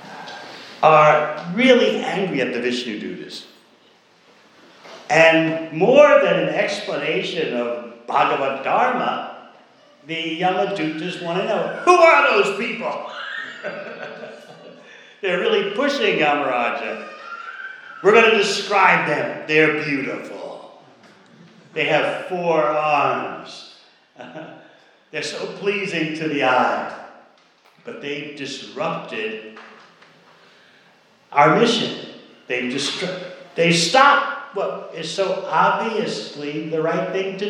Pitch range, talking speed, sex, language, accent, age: 140-195 Hz, 100 wpm, male, English, American, 60-79